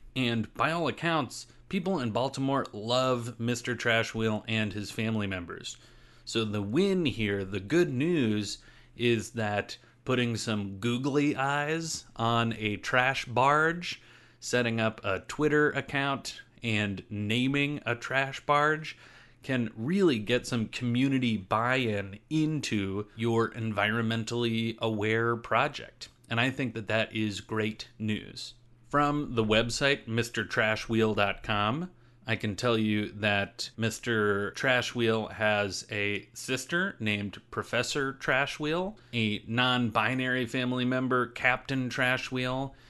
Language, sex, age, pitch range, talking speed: English, male, 30-49, 110-130 Hz, 115 wpm